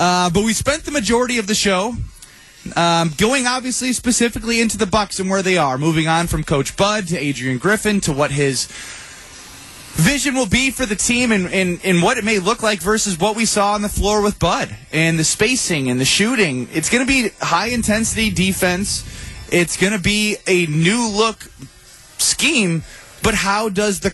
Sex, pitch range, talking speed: male, 165-210 Hz, 195 wpm